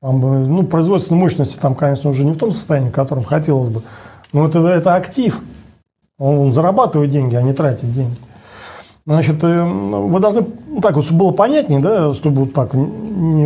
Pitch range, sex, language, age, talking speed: 135-175 Hz, male, Russian, 40-59, 170 wpm